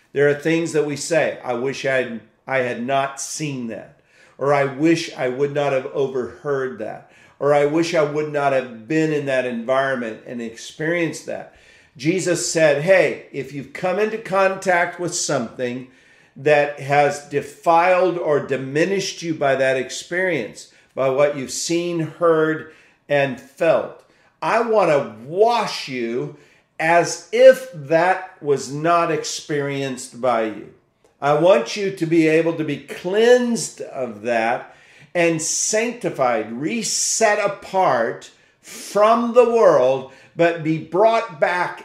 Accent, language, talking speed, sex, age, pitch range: American, English, 140 wpm, male, 50-69, 135-175 Hz